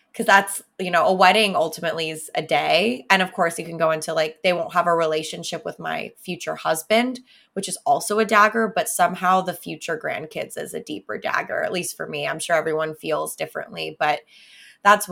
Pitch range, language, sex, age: 165-210 Hz, English, female, 20-39